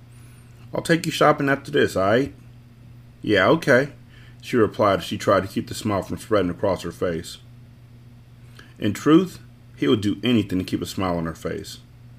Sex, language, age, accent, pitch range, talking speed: male, English, 40-59, American, 100-120 Hz, 175 wpm